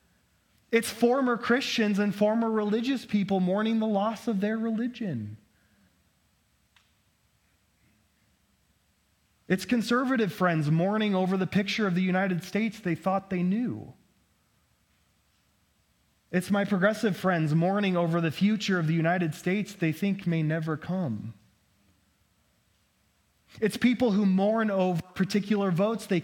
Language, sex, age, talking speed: English, male, 20-39, 120 wpm